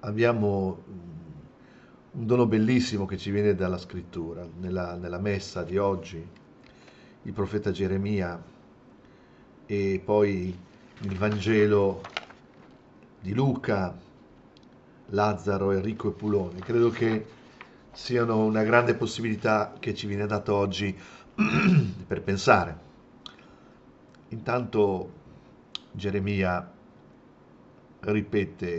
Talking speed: 90 wpm